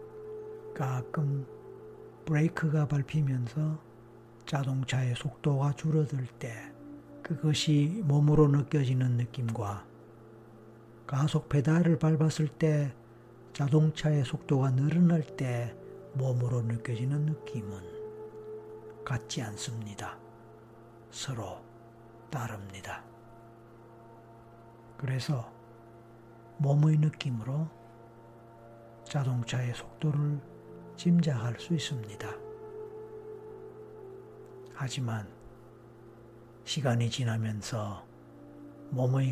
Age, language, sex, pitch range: 60-79, Korean, male, 115-145 Hz